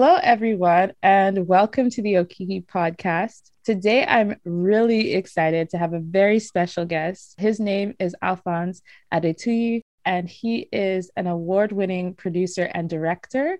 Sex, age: female, 20-39